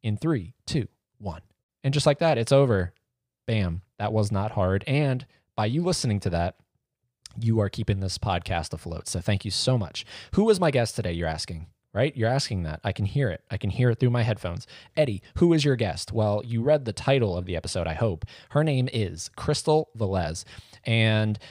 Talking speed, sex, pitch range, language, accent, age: 210 wpm, male, 95-125 Hz, English, American, 20-39